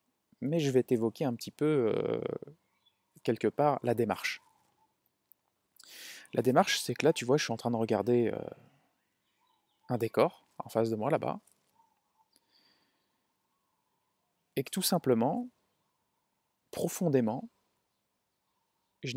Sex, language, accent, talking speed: male, French, French, 120 wpm